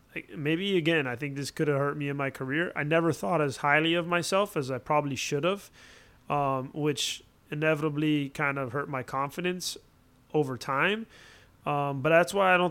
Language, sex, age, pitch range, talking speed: English, male, 30-49, 140-165 Hz, 190 wpm